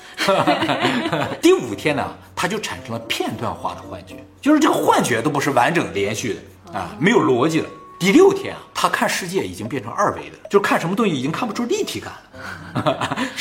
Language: Chinese